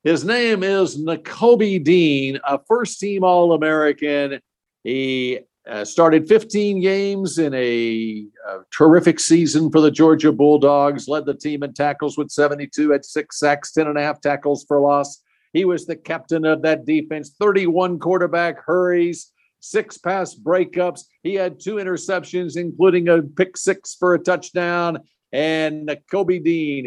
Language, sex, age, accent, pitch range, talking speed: English, male, 50-69, American, 135-175 Hz, 140 wpm